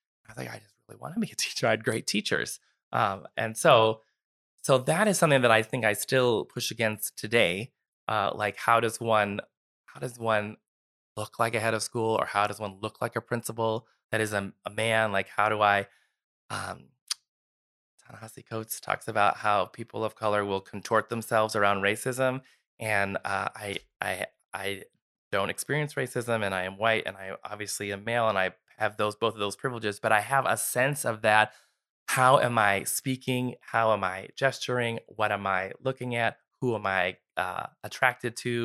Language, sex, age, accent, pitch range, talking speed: English, male, 20-39, American, 100-120 Hz, 195 wpm